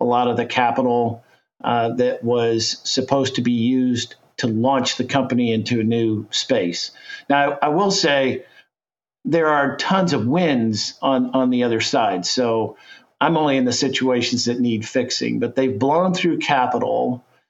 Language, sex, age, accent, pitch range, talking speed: English, male, 50-69, American, 125-150 Hz, 165 wpm